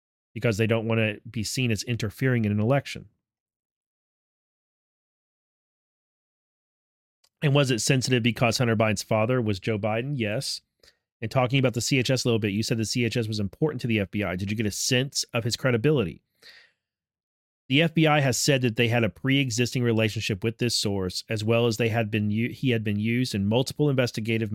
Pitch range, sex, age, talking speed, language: 110-125 Hz, male, 30-49, 185 wpm, English